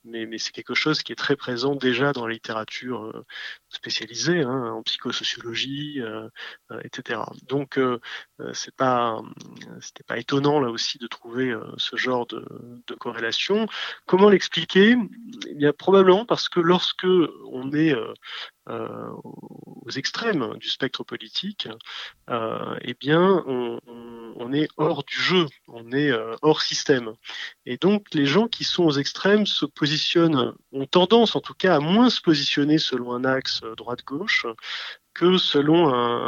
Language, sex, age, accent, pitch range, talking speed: French, male, 30-49, French, 125-170 Hz, 155 wpm